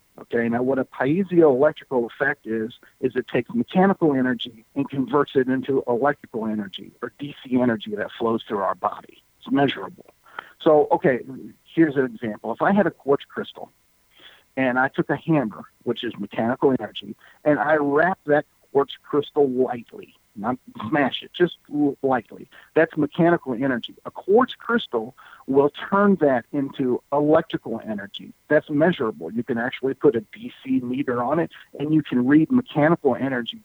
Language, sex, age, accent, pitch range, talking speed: English, male, 50-69, American, 125-160 Hz, 160 wpm